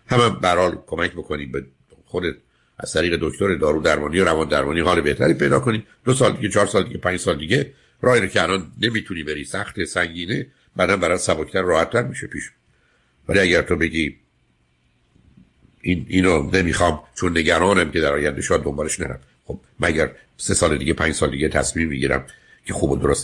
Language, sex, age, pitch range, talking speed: Persian, male, 60-79, 75-90 Hz, 175 wpm